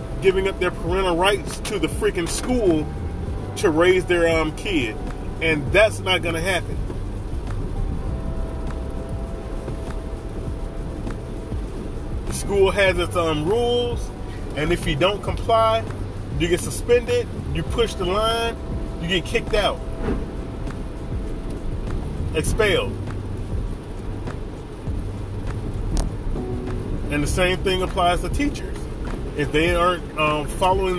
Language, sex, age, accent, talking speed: English, male, 30-49, American, 105 wpm